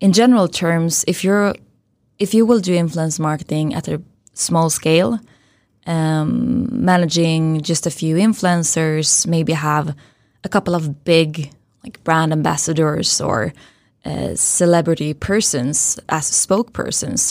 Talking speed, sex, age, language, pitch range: 125 wpm, female, 20-39, English, 155-185 Hz